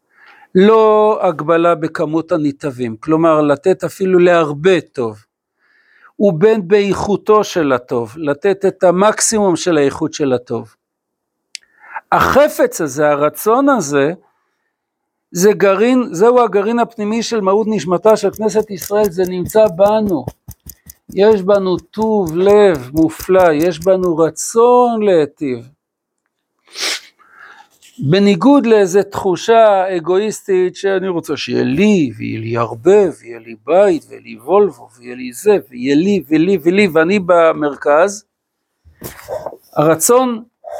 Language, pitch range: Hebrew, 155-215 Hz